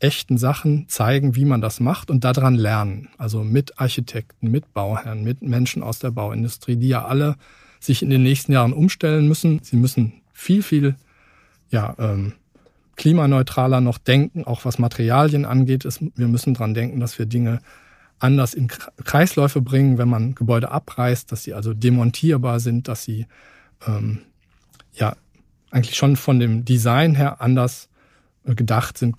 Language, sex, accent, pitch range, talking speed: German, male, German, 120-140 Hz, 155 wpm